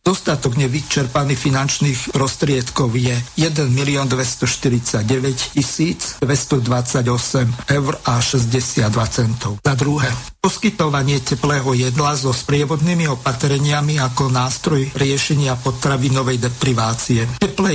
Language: Slovak